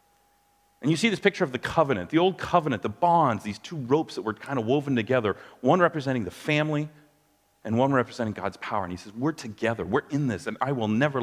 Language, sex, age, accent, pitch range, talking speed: English, male, 40-59, American, 110-150 Hz, 230 wpm